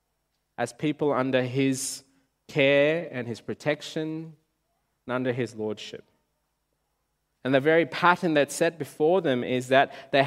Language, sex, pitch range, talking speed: English, male, 140-200 Hz, 135 wpm